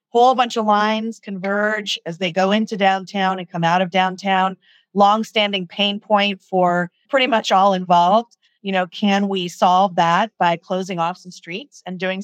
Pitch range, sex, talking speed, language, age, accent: 180-210 Hz, female, 175 wpm, English, 30-49, American